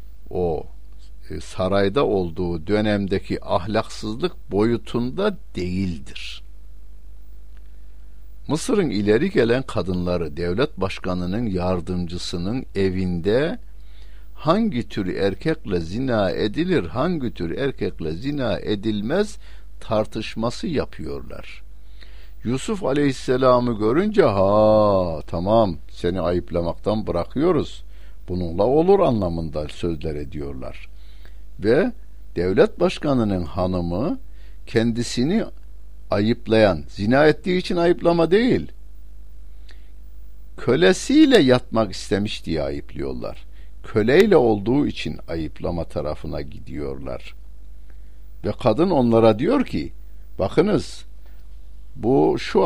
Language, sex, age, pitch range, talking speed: Turkish, male, 60-79, 90-125 Hz, 80 wpm